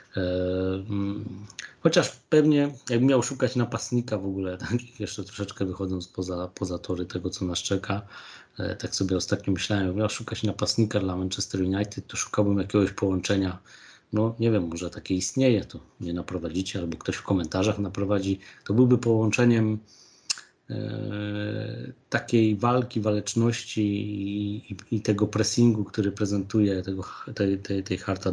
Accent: native